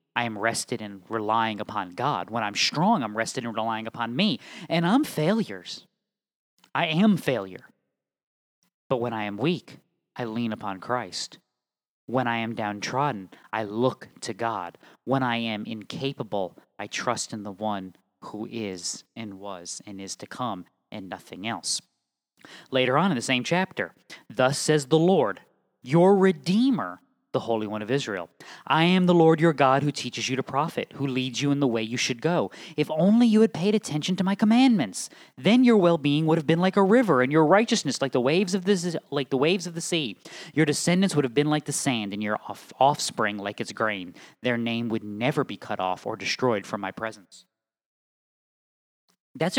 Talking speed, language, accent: 190 wpm, English, American